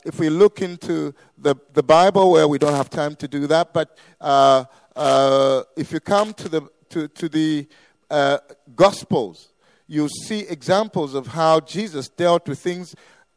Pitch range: 145-185 Hz